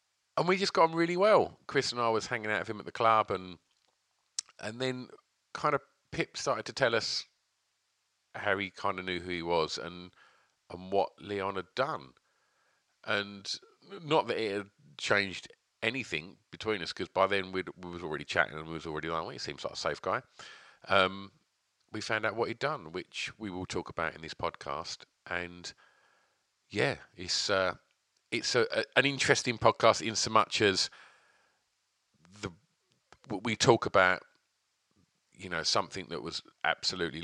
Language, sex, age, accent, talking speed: English, male, 40-59, British, 175 wpm